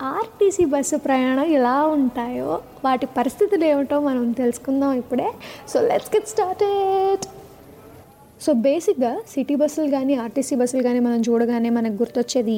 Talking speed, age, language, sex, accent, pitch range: 135 wpm, 20-39, Telugu, female, native, 245-300 Hz